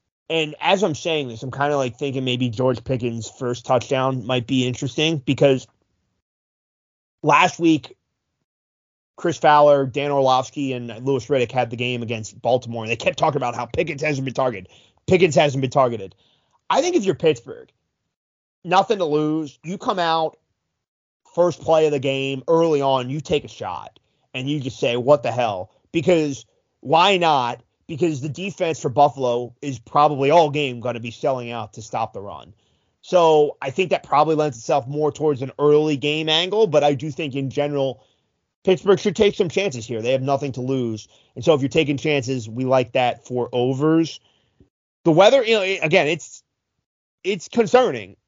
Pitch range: 125-155 Hz